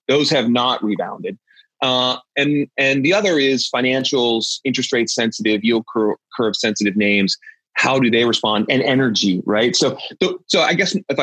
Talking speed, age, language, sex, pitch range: 170 wpm, 30-49, English, male, 115-145 Hz